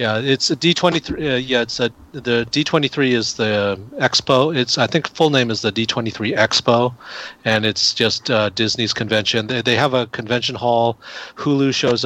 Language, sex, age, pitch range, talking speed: English, male, 40-59, 105-125 Hz, 185 wpm